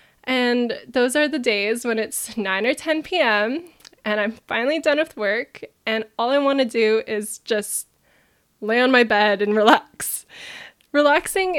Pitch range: 215-270 Hz